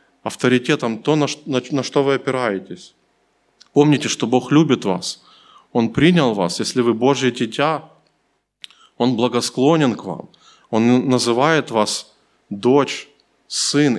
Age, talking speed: 20-39, 115 wpm